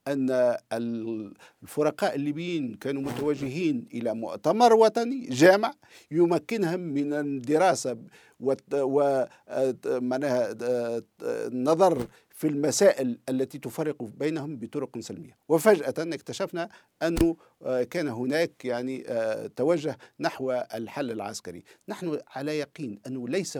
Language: Arabic